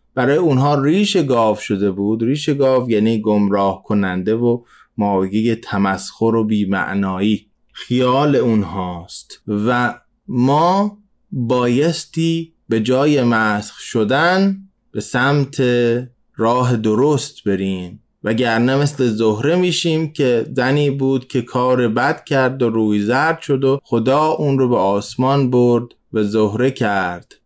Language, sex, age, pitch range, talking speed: Persian, male, 20-39, 110-140 Hz, 120 wpm